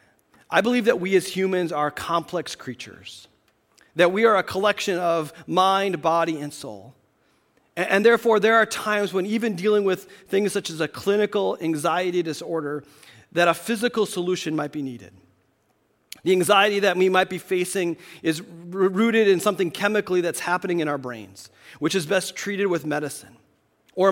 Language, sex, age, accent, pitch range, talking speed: English, male, 40-59, American, 155-195 Hz, 165 wpm